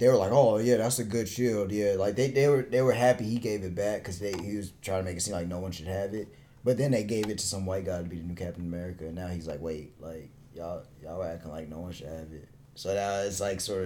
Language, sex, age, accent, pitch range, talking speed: English, male, 20-39, American, 95-125 Hz, 310 wpm